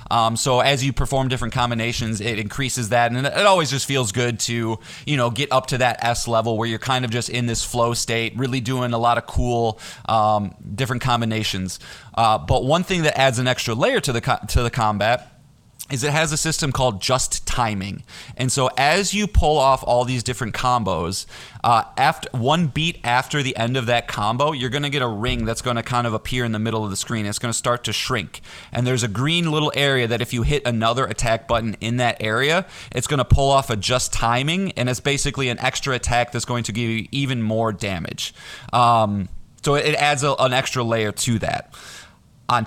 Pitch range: 115-140 Hz